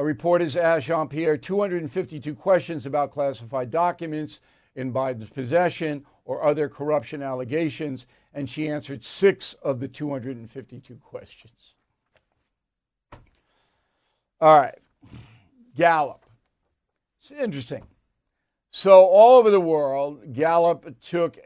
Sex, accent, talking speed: male, American, 100 wpm